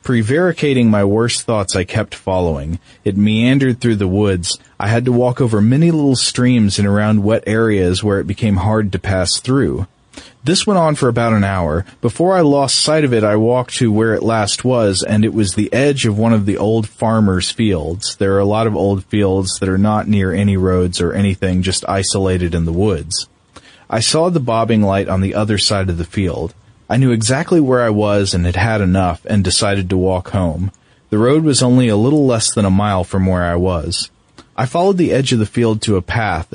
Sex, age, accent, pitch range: male, 30-49, American, 95-120 Hz